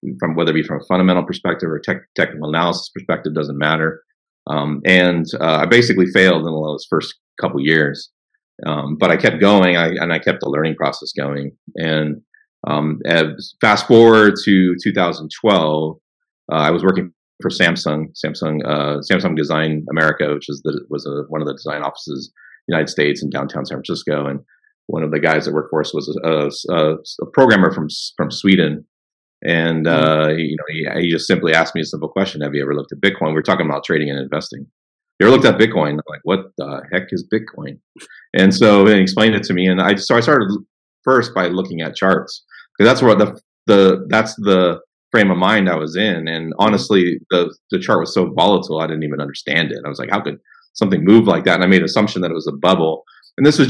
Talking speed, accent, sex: 220 wpm, American, male